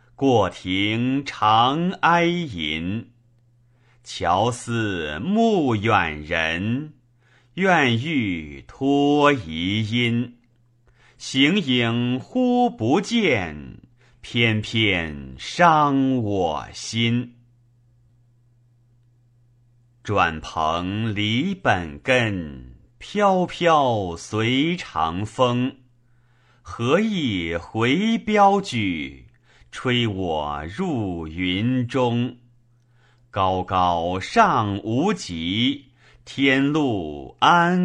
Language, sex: Chinese, male